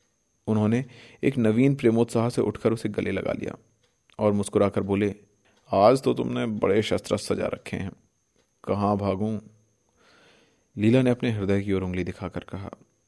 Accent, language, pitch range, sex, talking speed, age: native, Hindi, 90-115 Hz, male, 145 wpm, 30-49